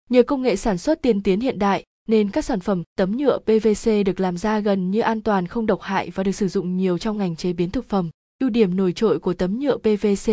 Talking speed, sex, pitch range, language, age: 260 wpm, female, 195-235 Hz, Vietnamese, 20-39